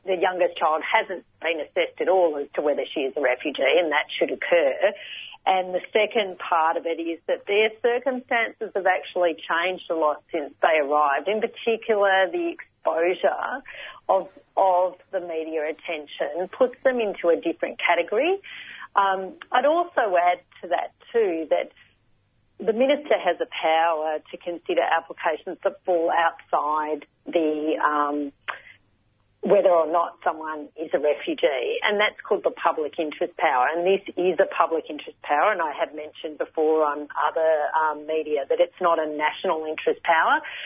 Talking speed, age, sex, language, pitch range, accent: 160 wpm, 40-59, female, English, 160-230 Hz, Australian